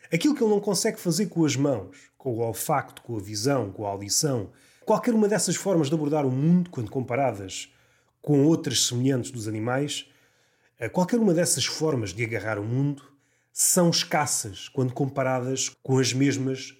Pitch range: 120-175 Hz